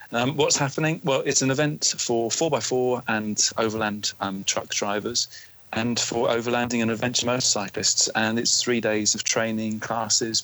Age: 40-59